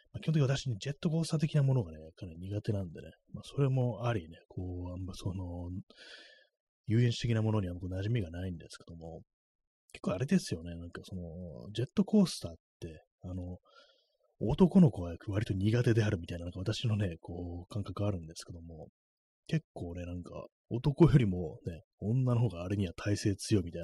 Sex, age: male, 30-49